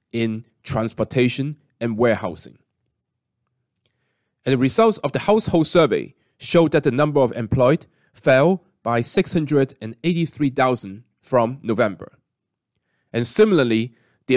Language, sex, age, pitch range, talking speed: English, male, 30-49, 115-155 Hz, 105 wpm